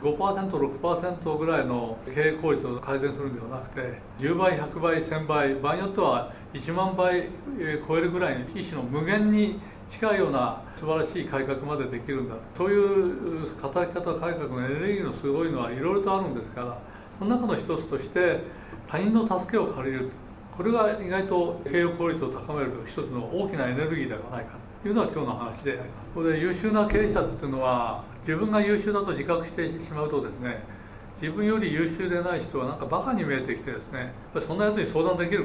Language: Japanese